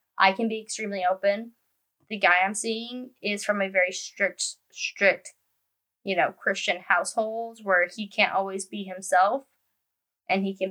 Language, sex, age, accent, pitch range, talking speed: English, female, 10-29, American, 190-225 Hz, 155 wpm